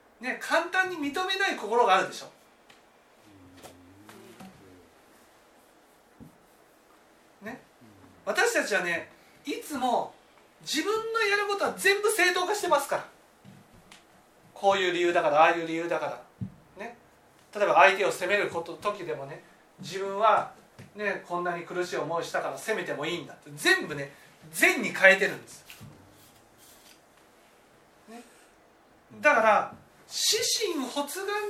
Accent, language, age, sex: native, Japanese, 40-59, male